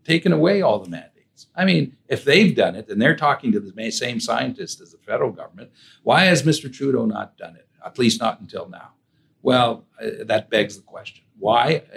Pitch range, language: 100-165 Hz, English